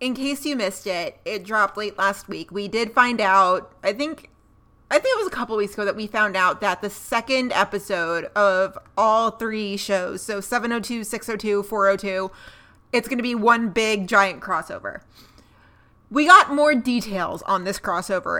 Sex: female